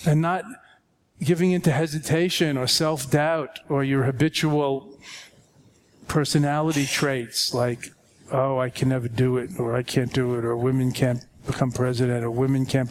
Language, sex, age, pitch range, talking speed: English, male, 40-59, 125-150 Hz, 155 wpm